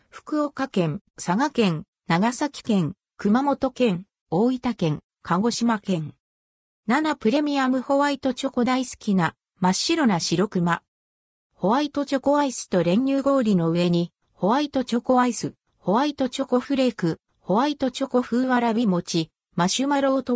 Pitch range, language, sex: 180-265 Hz, Japanese, female